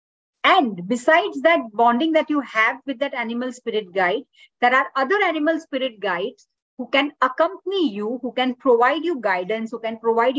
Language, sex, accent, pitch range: English, female, Indian, 230-290 Hz